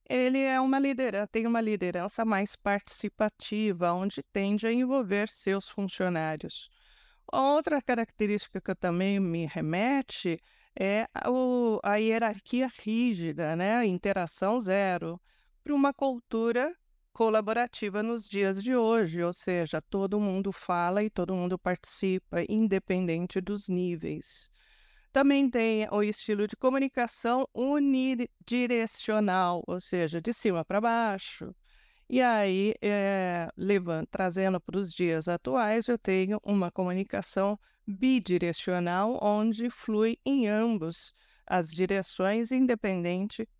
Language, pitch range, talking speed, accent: Portuguese, 185-235 Hz, 105 wpm, Brazilian